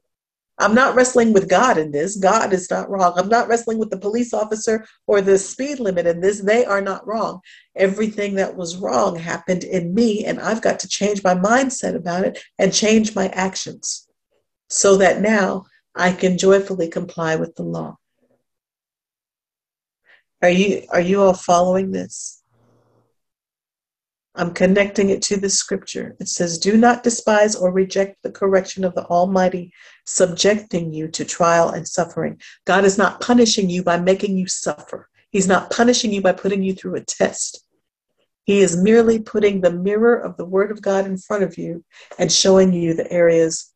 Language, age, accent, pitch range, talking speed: English, 50-69, American, 175-205 Hz, 175 wpm